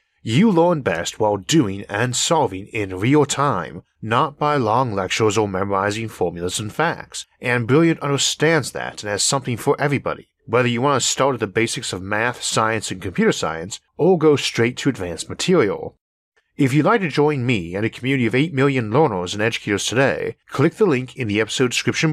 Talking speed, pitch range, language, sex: 195 wpm, 100-145 Hz, English, male